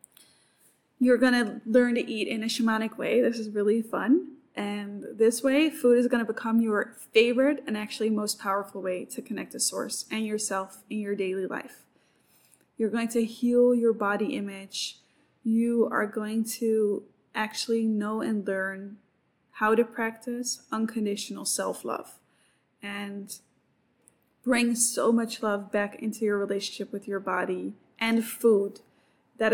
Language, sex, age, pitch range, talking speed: English, female, 10-29, 205-240 Hz, 150 wpm